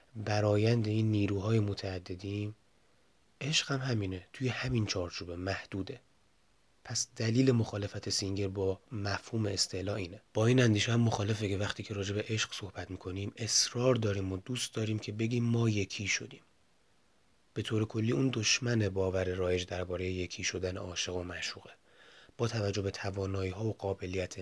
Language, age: Persian, 30-49